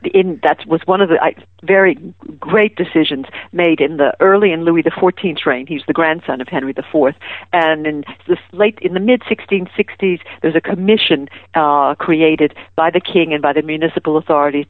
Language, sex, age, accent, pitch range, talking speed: English, female, 50-69, American, 150-180 Hz, 185 wpm